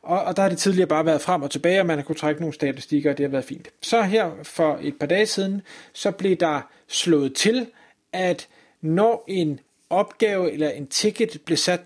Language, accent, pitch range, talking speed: Danish, native, 165-220 Hz, 220 wpm